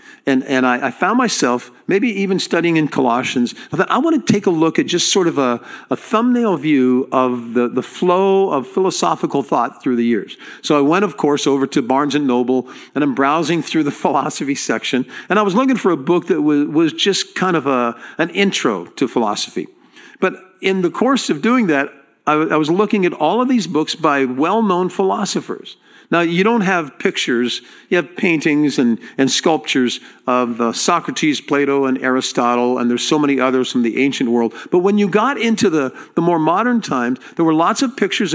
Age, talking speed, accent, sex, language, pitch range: 50-69, 210 wpm, American, male, English, 135-195 Hz